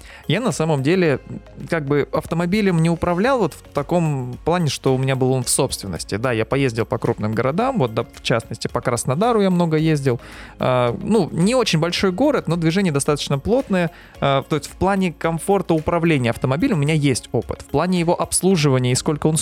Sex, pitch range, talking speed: male, 125-175 Hz, 200 wpm